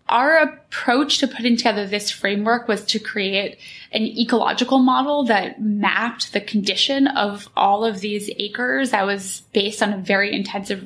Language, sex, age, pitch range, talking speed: English, female, 10-29, 200-235 Hz, 160 wpm